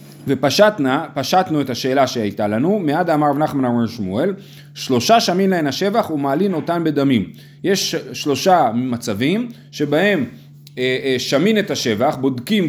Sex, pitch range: male, 140-180 Hz